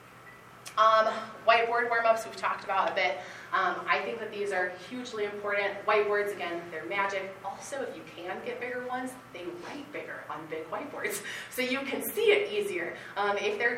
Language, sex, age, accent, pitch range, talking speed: English, female, 20-39, American, 200-270 Hz, 185 wpm